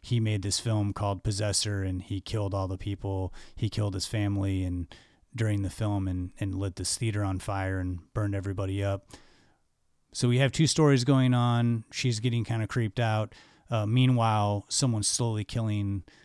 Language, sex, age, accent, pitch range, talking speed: English, male, 30-49, American, 95-110 Hz, 180 wpm